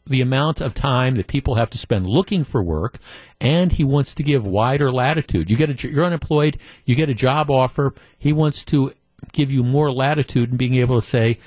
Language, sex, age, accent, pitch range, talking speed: English, male, 50-69, American, 110-145 Hz, 225 wpm